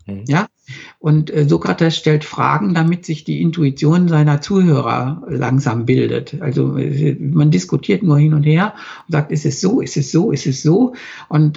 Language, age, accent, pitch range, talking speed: German, 60-79, German, 145-165 Hz, 170 wpm